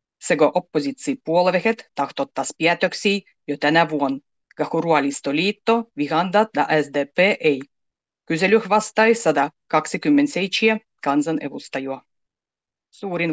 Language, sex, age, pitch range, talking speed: Finnish, female, 30-49, 150-205 Hz, 85 wpm